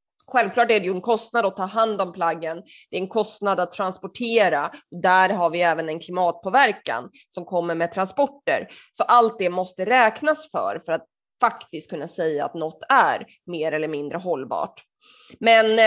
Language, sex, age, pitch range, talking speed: Swedish, female, 20-39, 175-240 Hz, 175 wpm